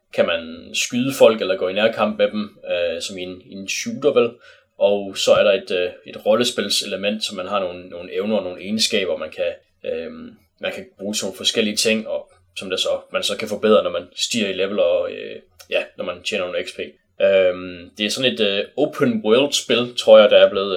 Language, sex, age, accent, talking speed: Danish, male, 20-39, native, 230 wpm